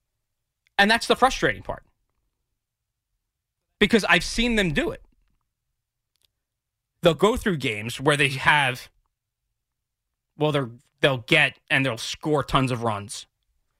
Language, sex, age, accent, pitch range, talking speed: English, male, 30-49, American, 115-185 Hz, 120 wpm